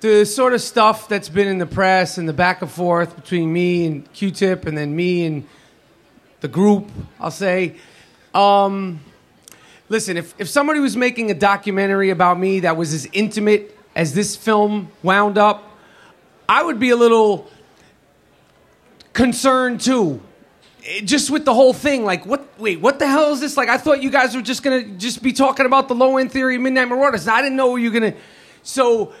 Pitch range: 185-245 Hz